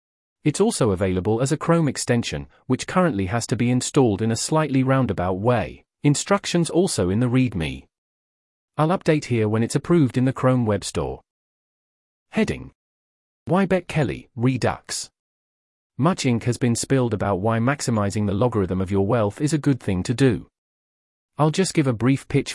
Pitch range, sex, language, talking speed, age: 100-145 Hz, male, English, 170 wpm, 40-59